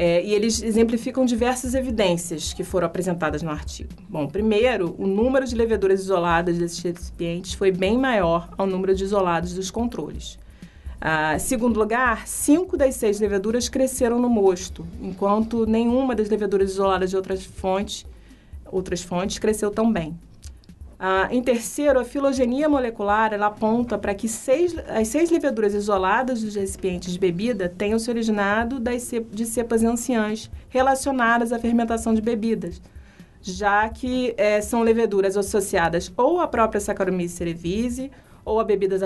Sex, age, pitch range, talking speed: female, 30-49, 185-235 Hz, 145 wpm